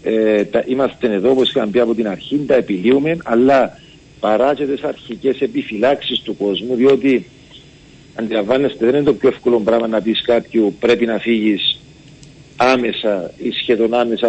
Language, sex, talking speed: Greek, male, 155 wpm